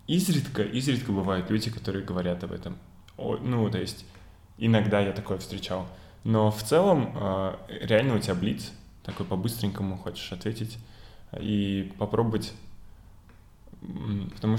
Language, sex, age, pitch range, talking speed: Russian, male, 10-29, 95-105 Hz, 120 wpm